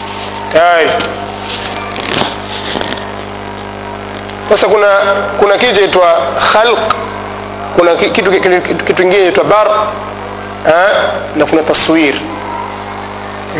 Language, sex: Swahili, male